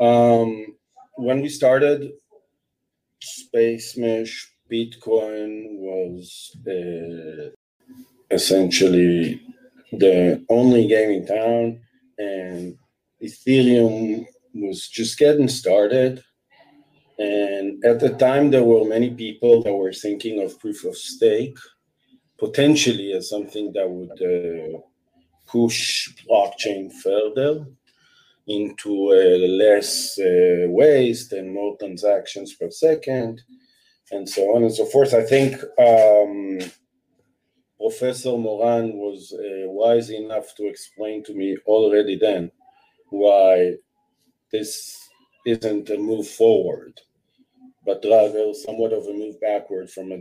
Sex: male